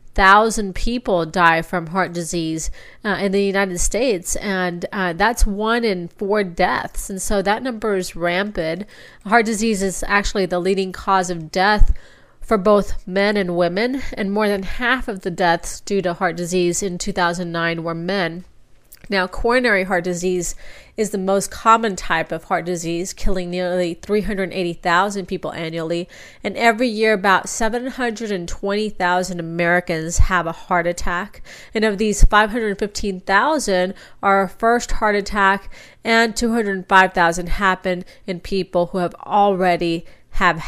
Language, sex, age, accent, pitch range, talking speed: English, female, 30-49, American, 180-205 Hz, 145 wpm